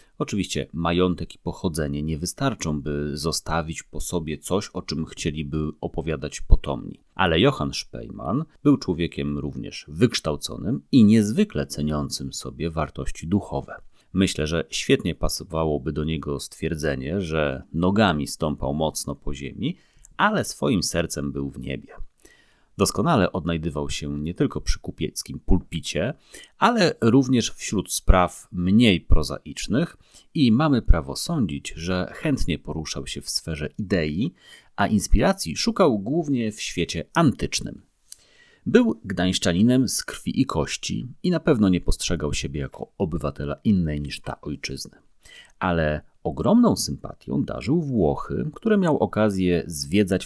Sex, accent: male, native